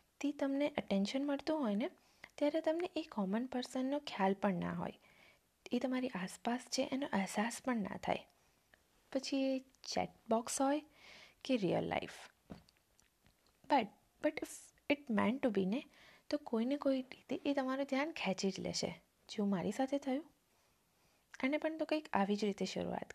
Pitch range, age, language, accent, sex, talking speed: 200-280 Hz, 20-39, Gujarati, native, female, 155 wpm